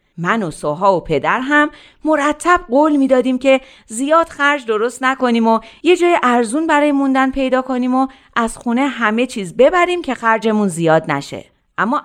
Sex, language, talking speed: female, Persian, 165 wpm